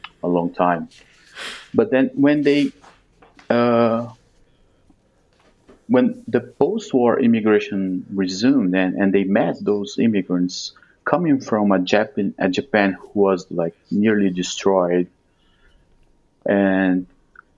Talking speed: 105 wpm